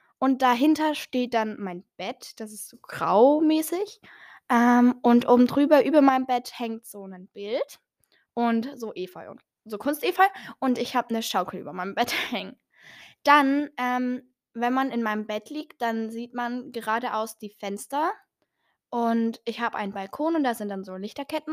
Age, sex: 10-29, female